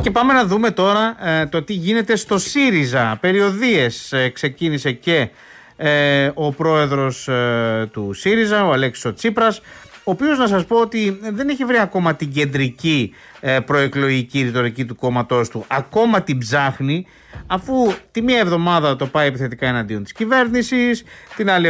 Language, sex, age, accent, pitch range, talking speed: Greek, male, 30-49, native, 130-195 Hz, 160 wpm